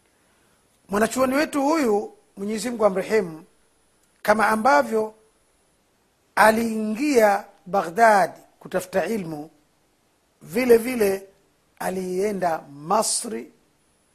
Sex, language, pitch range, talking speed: male, Swahili, 170-220 Hz, 70 wpm